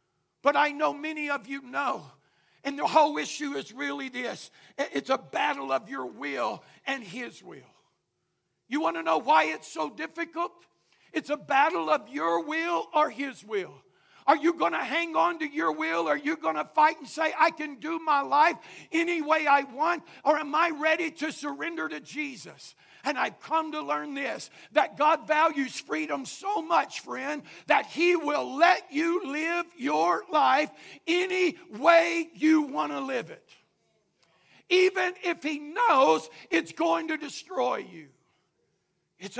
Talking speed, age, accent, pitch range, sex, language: 170 wpm, 60-79, American, 230-320 Hz, male, English